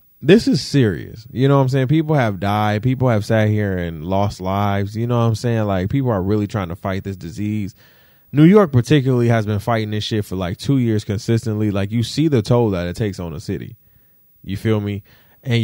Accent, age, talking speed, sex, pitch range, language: American, 20-39, 230 wpm, male, 100-150 Hz, English